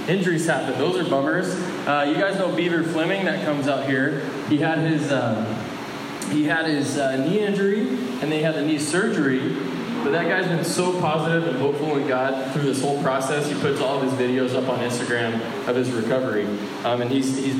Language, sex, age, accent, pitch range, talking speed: English, male, 20-39, American, 130-160 Hz, 210 wpm